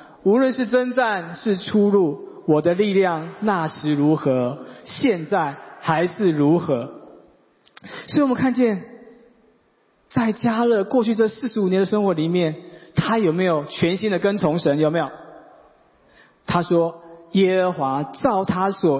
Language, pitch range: Chinese, 160-215 Hz